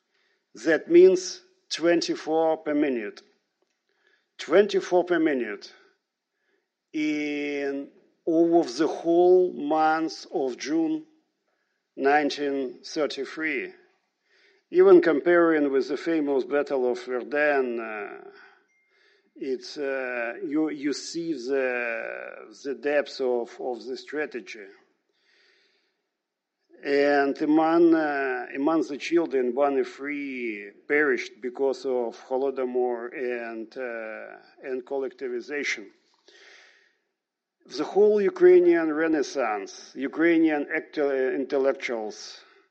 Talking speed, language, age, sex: 85 wpm, English, 50-69, male